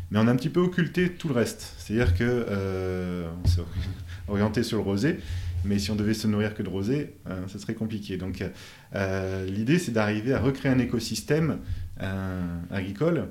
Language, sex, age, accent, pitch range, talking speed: French, male, 30-49, French, 90-115 Hz, 190 wpm